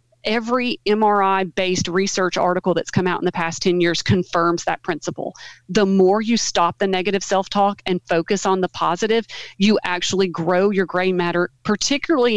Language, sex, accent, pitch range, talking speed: English, female, American, 180-215 Hz, 165 wpm